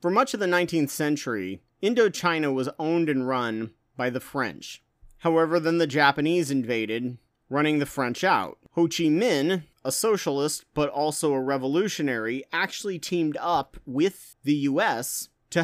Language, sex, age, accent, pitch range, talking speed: English, male, 30-49, American, 130-160 Hz, 150 wpm